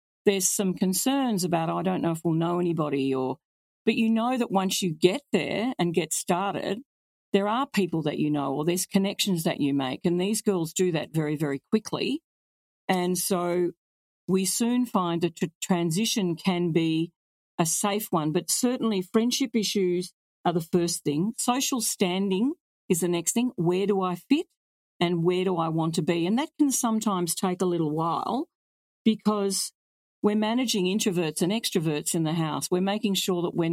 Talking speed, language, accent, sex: 180 wpm, English, Australian, female